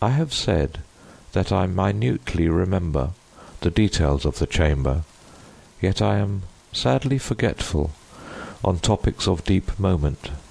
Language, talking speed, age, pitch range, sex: English, 125 wpm, 50-69, 80-105 Hz, male